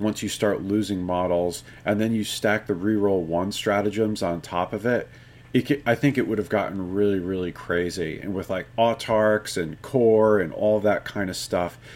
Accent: American